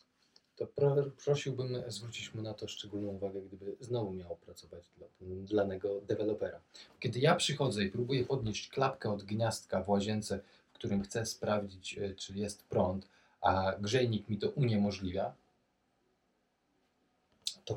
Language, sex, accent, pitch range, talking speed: Polish, male, native, 100-125 Hz, 130 wpm